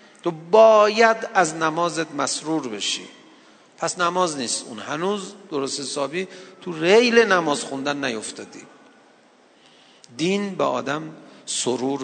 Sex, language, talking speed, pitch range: male, Persian, 110 wpm, 145-210 Hz